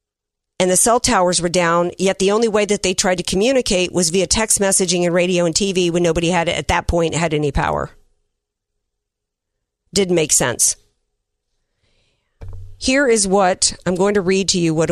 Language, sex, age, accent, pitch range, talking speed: English, female, 40-59, American, 160-195 Hz, 180 wpm